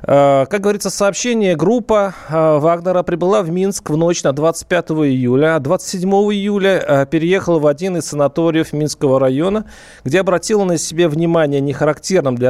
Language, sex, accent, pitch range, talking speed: Russian, male, native, 135-180 Hz, 145 wpm